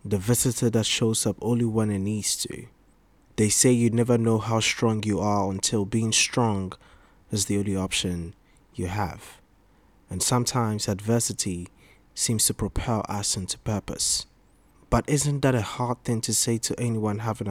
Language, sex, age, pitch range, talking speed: English, male, 20-39, 100-120 Hz, 165 wpm